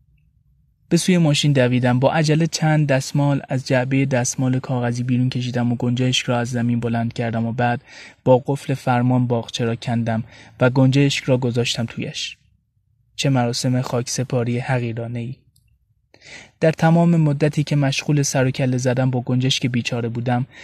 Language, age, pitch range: Persian, 20-39, 120-145 Hz